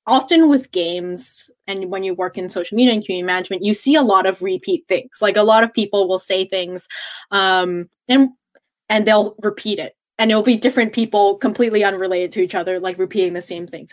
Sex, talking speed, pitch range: female, 215 wpm, 185-230 Hz